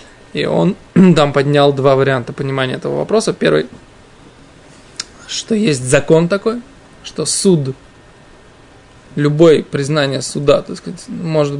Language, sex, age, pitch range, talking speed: Russian, male, 20-39, 140-170 Hz, 110 wpm